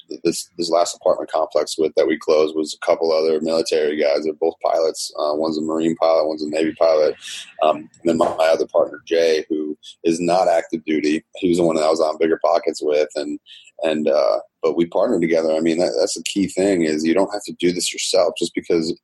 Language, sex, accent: English, male, American